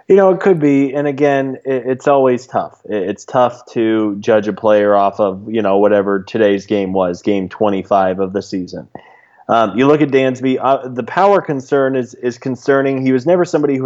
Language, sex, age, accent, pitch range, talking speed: English, male, 20-39, American, 110-135 Hz, 200 wpm